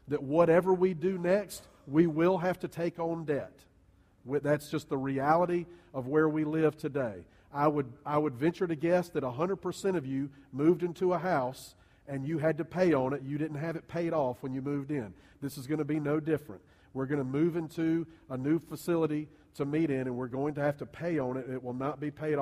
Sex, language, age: male, English, 40-59